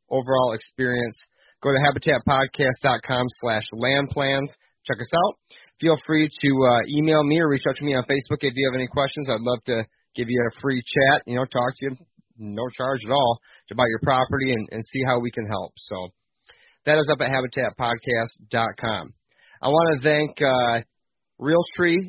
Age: 30-49